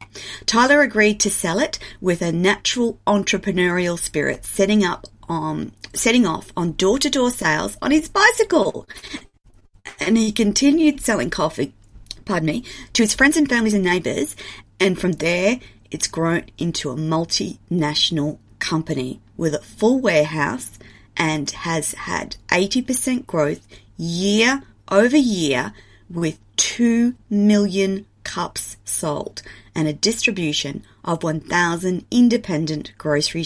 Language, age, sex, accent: English, 40-59, female, Australian